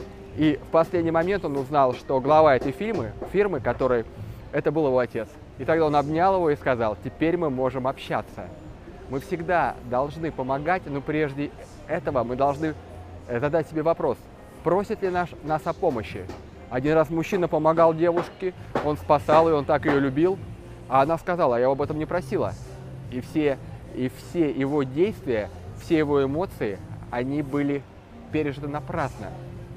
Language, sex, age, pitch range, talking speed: Russian, male, 20-39, 115-155 Hz, 155 wpm